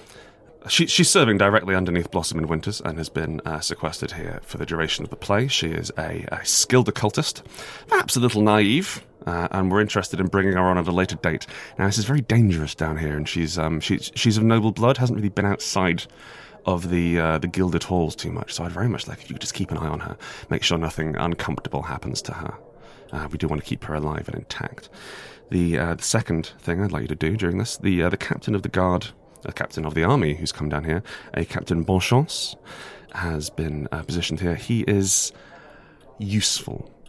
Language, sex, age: English, male, 30-49